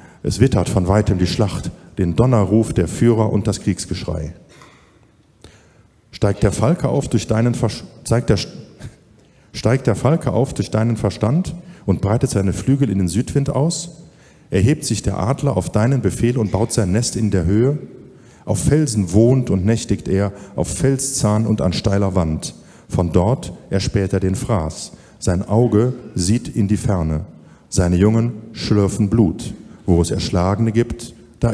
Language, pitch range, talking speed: German, 95-120 Hz, 145 wpm